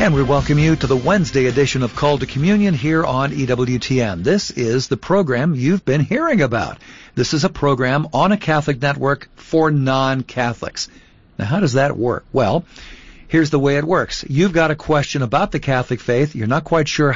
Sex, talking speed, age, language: male, 195 wpm, 50-69, English